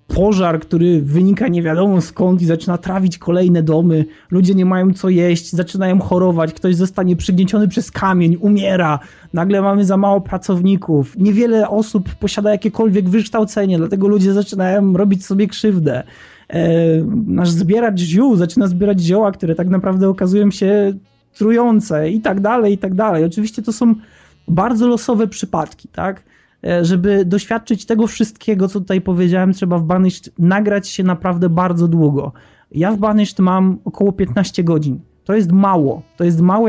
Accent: native